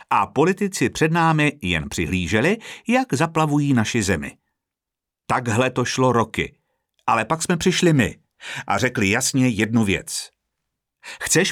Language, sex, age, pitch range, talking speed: Czech, male, 50-69, 105-160 Hz, 130 wpm